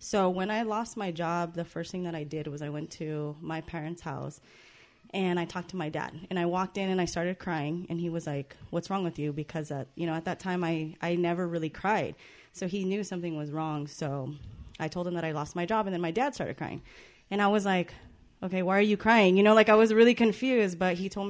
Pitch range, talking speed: 155-180 Hz, 260 wpm